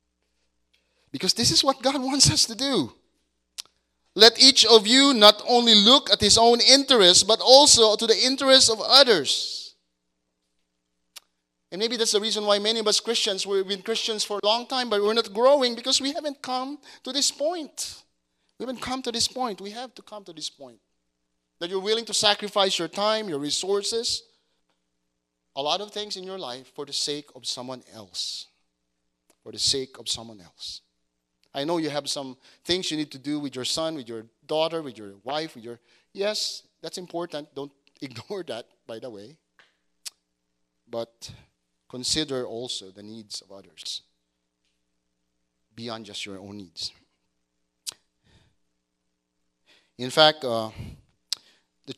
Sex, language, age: male, English, 30-49